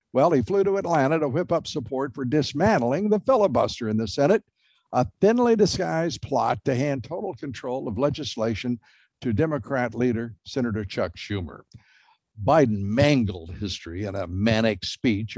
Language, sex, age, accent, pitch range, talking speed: English, male, 60-79, American, 120-185 Hz, 150 wpm